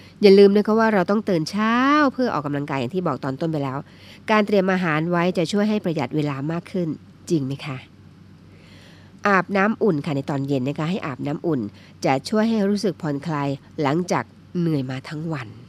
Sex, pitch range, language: female, 145-200 Hz, Thai